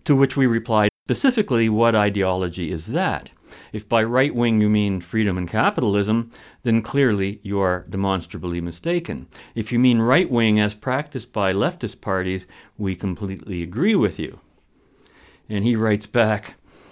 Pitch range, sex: 105-150 Hz, male